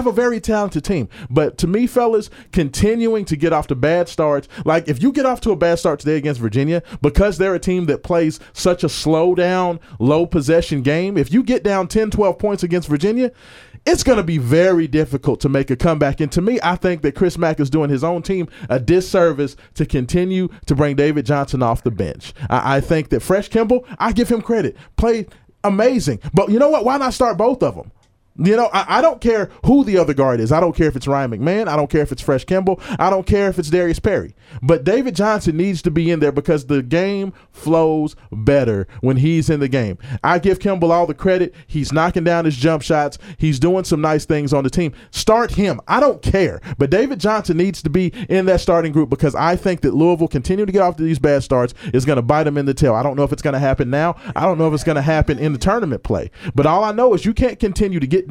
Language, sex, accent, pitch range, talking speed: English, male, American, 145-195 Hz, 250 wpm